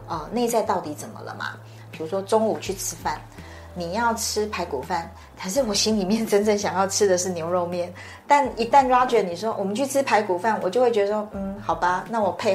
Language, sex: Chinese, female